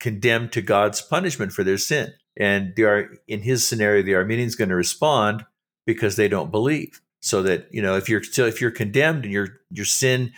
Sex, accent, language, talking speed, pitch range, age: male, American, English, 210 wpm, 115-140 Hz, 50-69